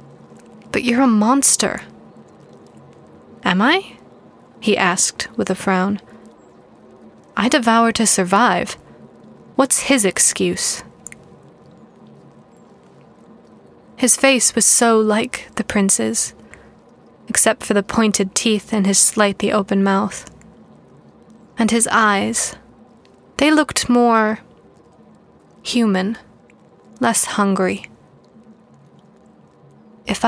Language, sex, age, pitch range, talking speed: English, female, 20-39, 195-240 Hz, 90 wpm